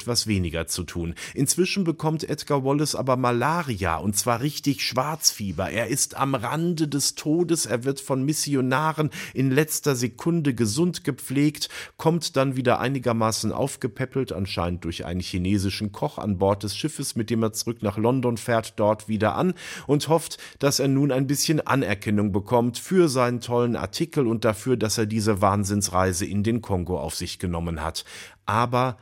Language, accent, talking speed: German, German, 165 wpm